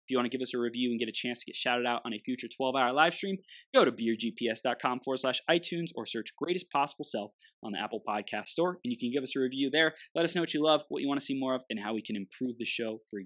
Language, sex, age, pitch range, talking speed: English, male, 20-39, 115-155 Hz, 305 wpm